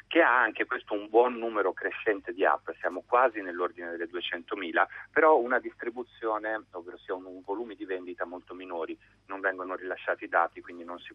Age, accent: 30-49, native